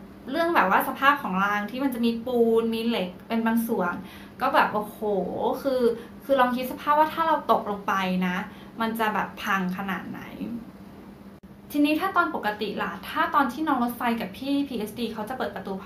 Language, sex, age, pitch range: Thai, female, 20-39, 195-245 Hz